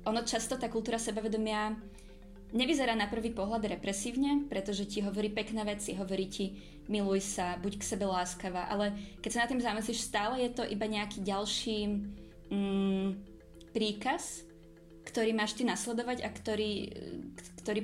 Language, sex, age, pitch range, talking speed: Czech, female, 20-39, 190-220 Hz, 150 wpm